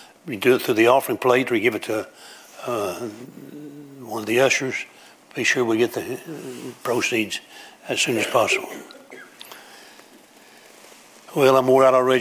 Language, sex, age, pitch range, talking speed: English, male, 60-79, 120-145 Hz, 155 wpm